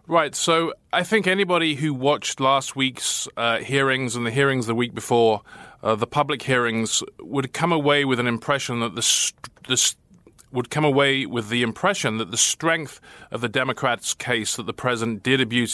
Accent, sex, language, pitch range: British, male, English, 115-140 Hz